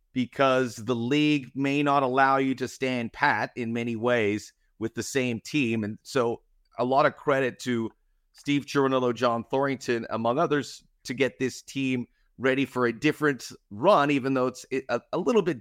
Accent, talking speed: American, 175 wpm